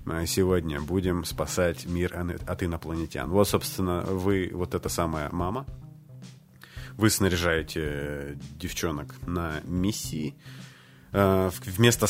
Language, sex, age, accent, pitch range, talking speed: Russian, male, 30-49, native, 80-100 Hz, 95 wpm